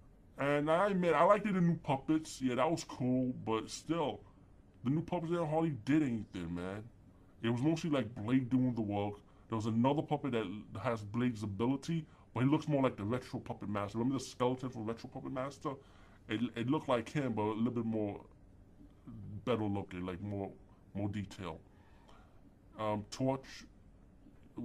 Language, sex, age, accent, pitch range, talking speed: English, female, 20-39, American, 105-150 Hz, 180 wpm